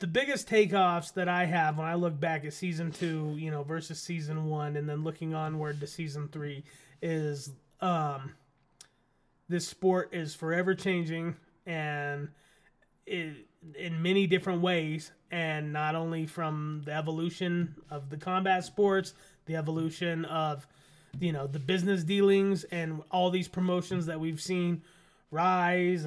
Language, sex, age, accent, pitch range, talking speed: English, male, 30-49, American, 155-180 Hz, 145 wpm